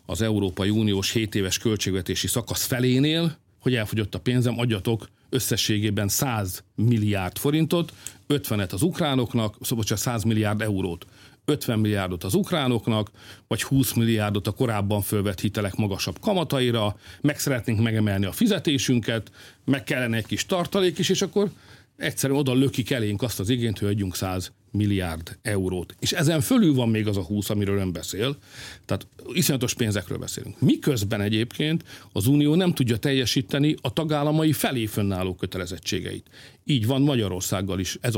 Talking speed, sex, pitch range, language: 150 wpm, male, 100-135 Hz, Hungarian